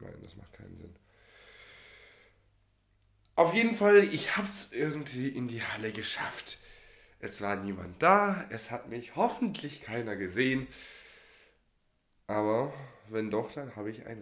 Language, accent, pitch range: German, German, 95-135 Hz